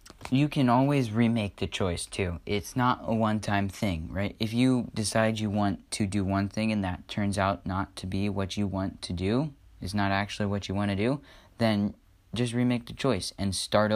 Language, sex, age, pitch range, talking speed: English, male, 20-39, 90-105 Hz, 210 wpm